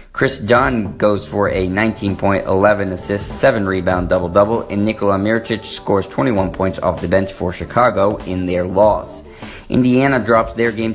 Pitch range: 95-110 Hz